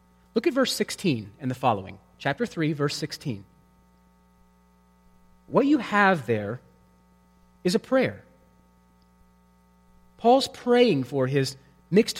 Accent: American